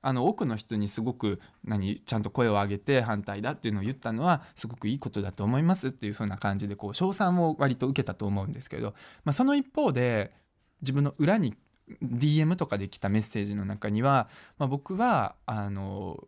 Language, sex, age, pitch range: Japanese, male, 20-39, 110-160 Hz